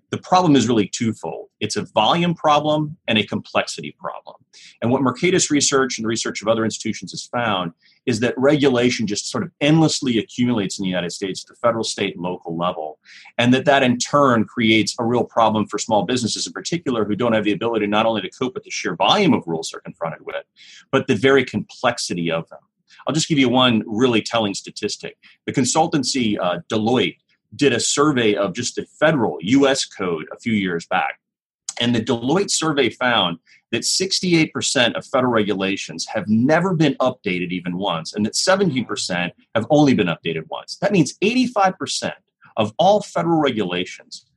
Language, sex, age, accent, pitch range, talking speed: English, male, 30-49, American, 105-155 Hz, 185 wpm